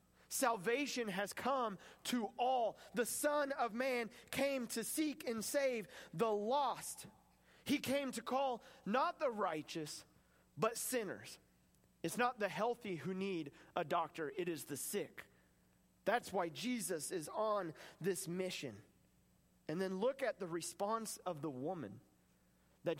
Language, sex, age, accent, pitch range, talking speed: English, male, 30-49, American, 180-255 Hz, 140 wpm